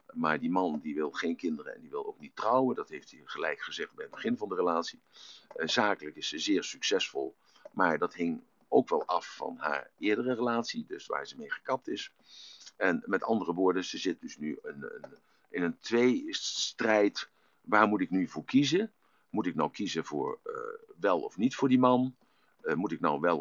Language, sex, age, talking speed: Dutch, male, 50-69, 210 wpm